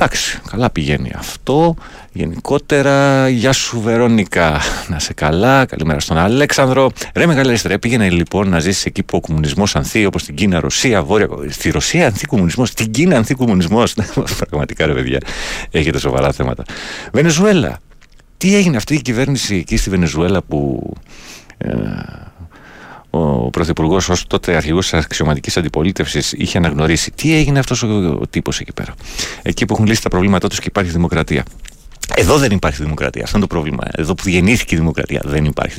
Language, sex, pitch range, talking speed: Greek, male, 80-110 Hz, 155 wpm